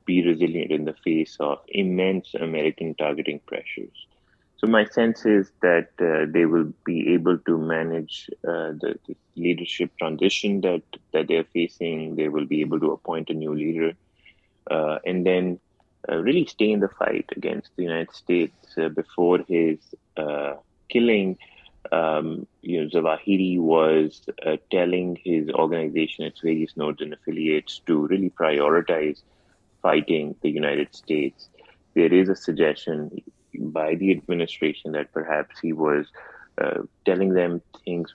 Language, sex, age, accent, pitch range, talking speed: English, male, 30-49, Indian, 80-95 Hz, 150 wpm